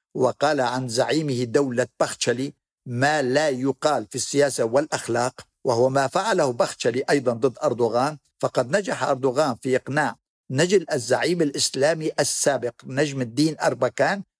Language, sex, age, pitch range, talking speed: Arabic, male, 60-79, 125-155 Hz, 125 wpm